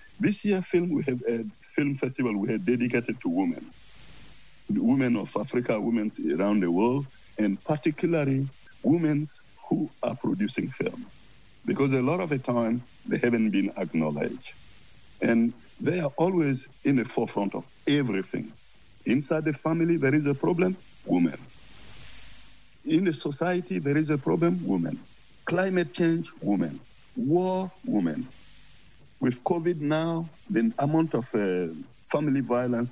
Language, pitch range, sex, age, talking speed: English, 120-170 Hz, male, 60-79, 140 wpm